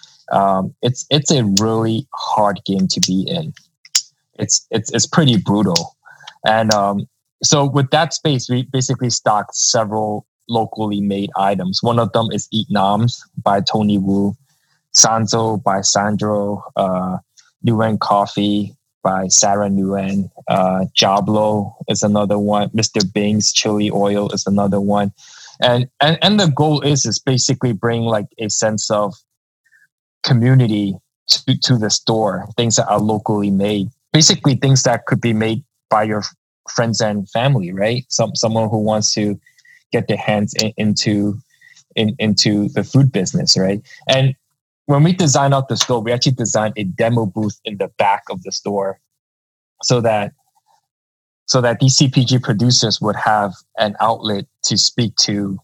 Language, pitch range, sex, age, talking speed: English, 100-130 Hz, male, 20-39, 155 wpm